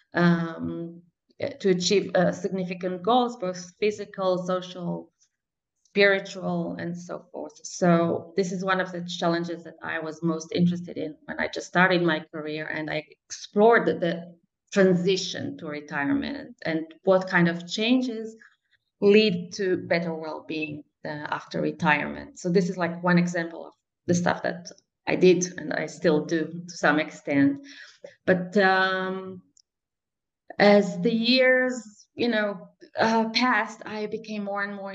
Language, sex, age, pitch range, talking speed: English, female, 20-39, 160-200 Hz, 145 wpm